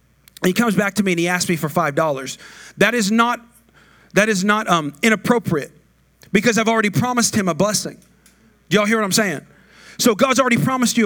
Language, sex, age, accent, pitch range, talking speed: English, male, 40-59, American, 160-220 Hz, 200 wpm